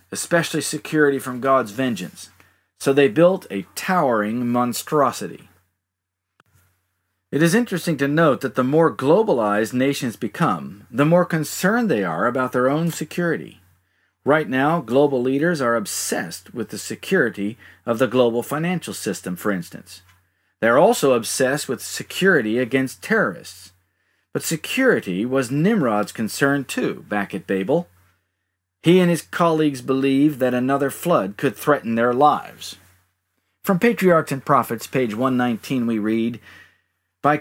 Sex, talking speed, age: male, 135 wpm, 50-69